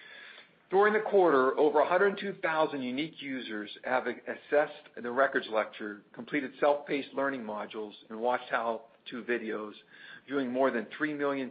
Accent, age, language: American, 50-69, English